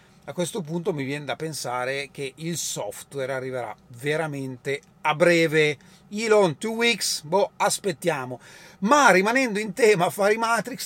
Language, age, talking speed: Italian, 40-59, 140 wpm